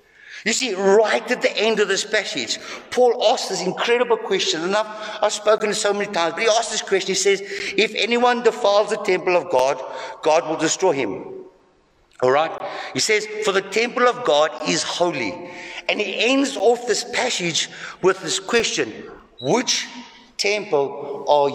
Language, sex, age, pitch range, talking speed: English, male, 60-79, 155-225 Hz, 170 wpm